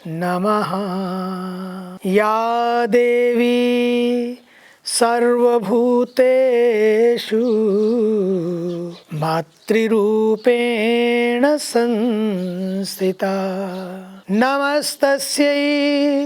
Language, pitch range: English, 200-255 Hz